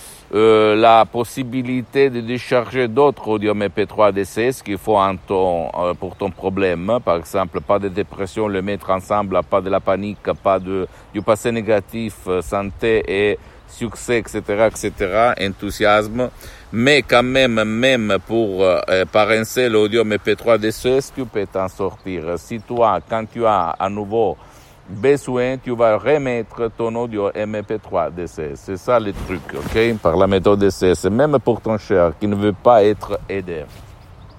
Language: Italian